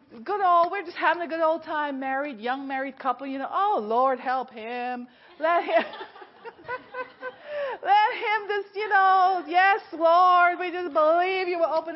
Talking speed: 170 wpm